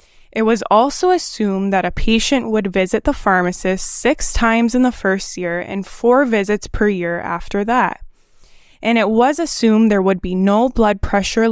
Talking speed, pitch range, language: 175 wpm, 195-250 Hz, English